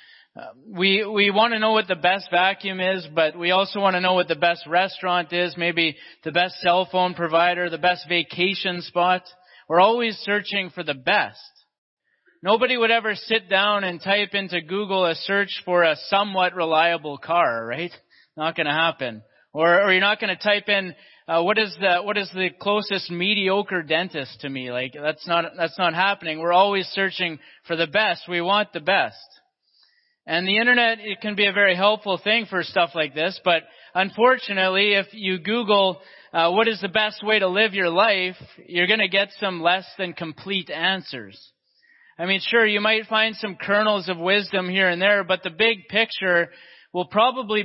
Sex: male